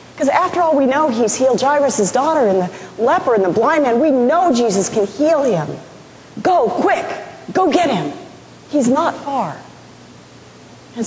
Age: 40-59